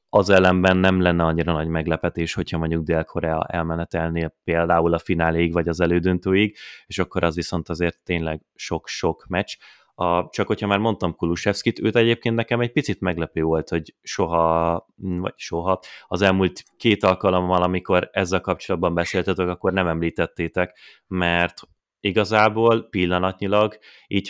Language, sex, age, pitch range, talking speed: Hungarian, male, 30-49, 85-95 Hz, 140 wpm